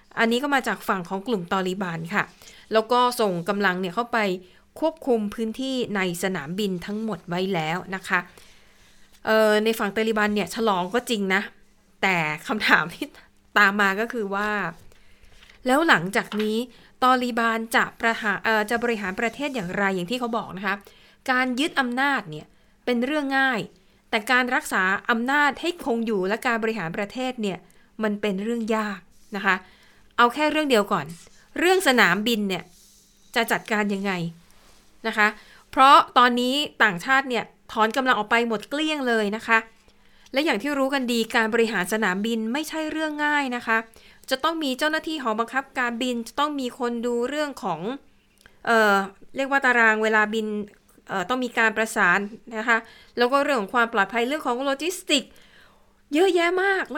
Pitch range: 205-260 Hz